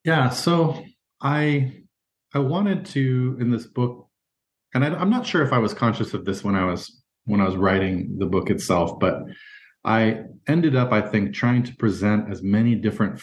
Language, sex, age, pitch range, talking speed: English, male, 30-49, 95-120 Hz, 190 wpm